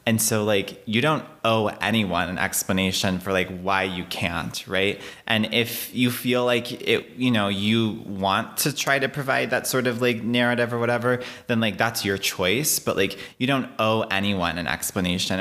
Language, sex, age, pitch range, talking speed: English, male, 20-39, 100-120 Hz, 190 wpm